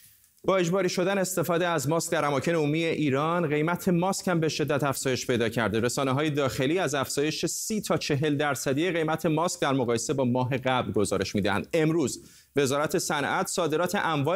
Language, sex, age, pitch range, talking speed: Persian, male, 30-49, 125-160 Hz, 170 wpm